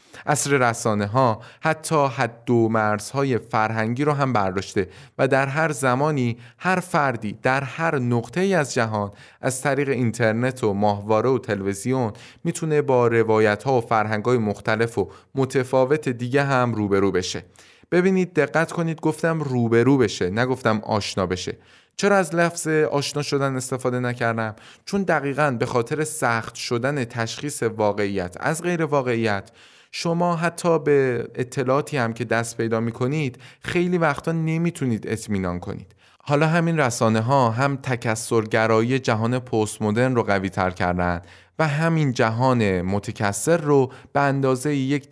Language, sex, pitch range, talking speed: Persian, male, 110-140 Hz, 145 wpm